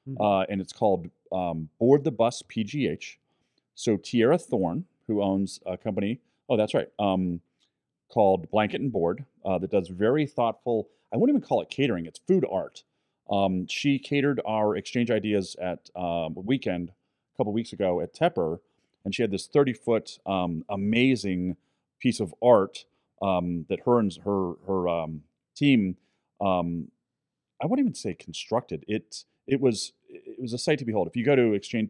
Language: English